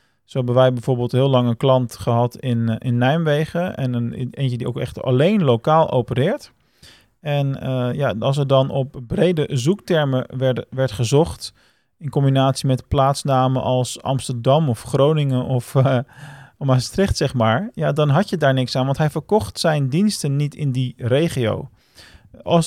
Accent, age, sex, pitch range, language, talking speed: Dutch, 40-59, male, 125-155 Hz, Dutch, 165 wpm